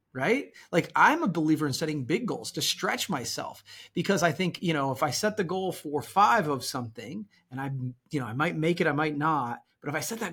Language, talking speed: English, 245 wpm